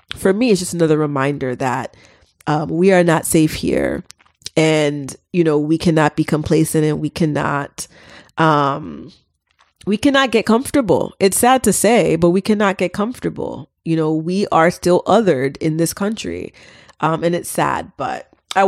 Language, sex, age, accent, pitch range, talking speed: English, female, 30-49, American, 155-205 Hz, 165 wpm